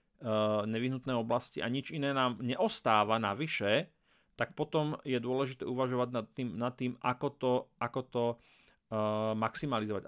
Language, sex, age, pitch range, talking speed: Slovak, male, 30-49, 115-135 Hz, 145 wpm